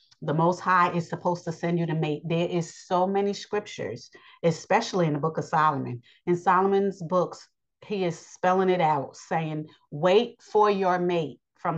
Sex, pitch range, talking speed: female, 165-195 Hz, 180 wpm